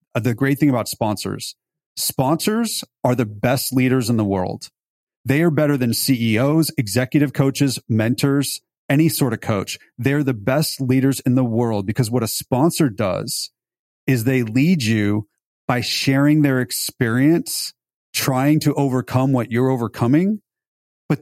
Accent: American